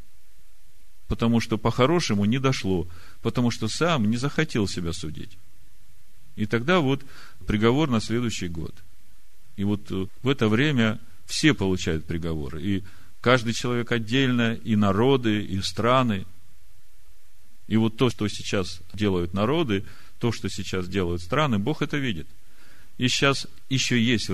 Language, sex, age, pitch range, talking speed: Russian, male, 40-59, 90-115 Hz, 135 wpm